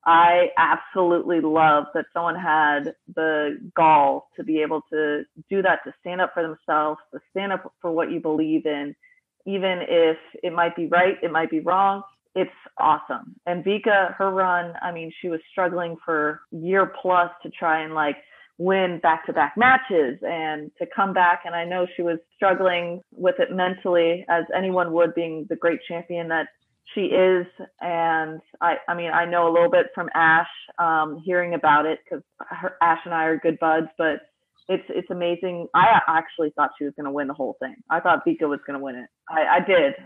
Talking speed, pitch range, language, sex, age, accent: 195 wpm, 165-200 Hz, English, female, 30-49, American